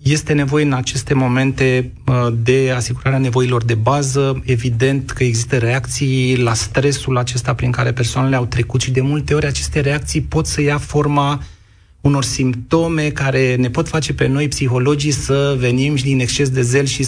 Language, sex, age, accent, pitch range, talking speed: Romanian, male, 30-49, native, 125-145 Hz, 170 wpm